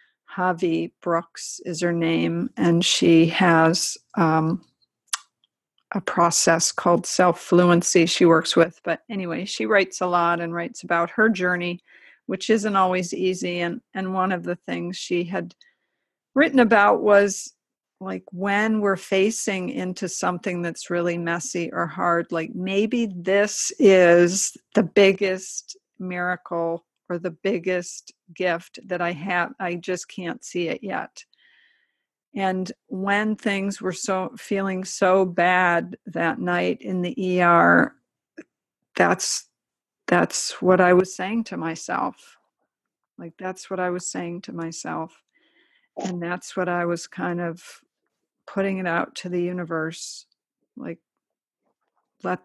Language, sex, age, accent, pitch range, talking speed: English, female, 50-69, American, 170-195 Hz, 135 wpm